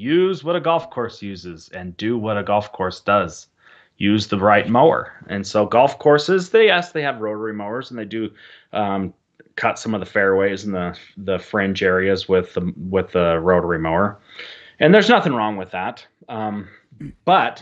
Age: 30-49